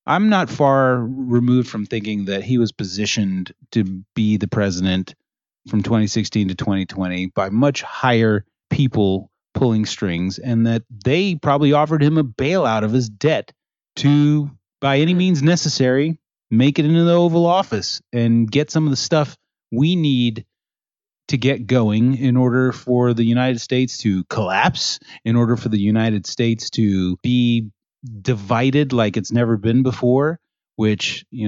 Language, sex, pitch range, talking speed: English, male, 105-135 Hz, 155 wpm